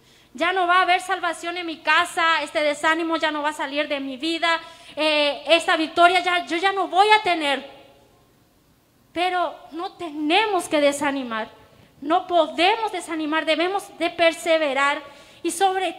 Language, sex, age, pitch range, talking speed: Spanish, female, 20-39, 305-360 Hz, 160 wpm